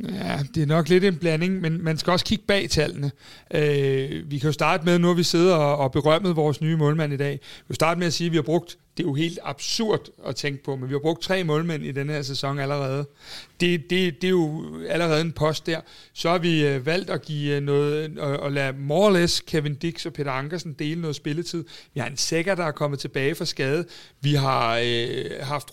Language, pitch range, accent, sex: Danish, 140-175 Hz, native, male